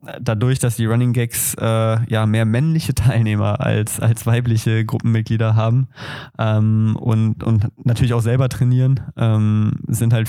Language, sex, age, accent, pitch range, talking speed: German, male, 20-39, German, 110-130 Hz, 140 wpm